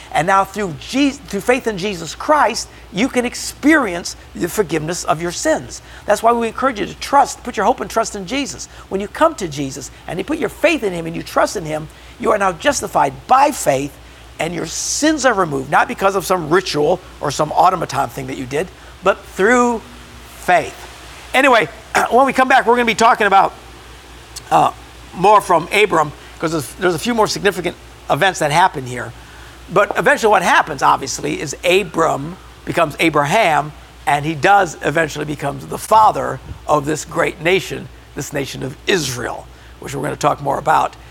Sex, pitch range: male, 155-235 Hz